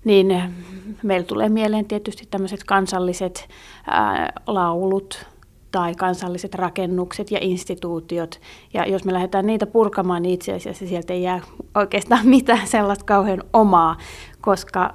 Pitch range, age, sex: 185-215 Hz, 30-49, female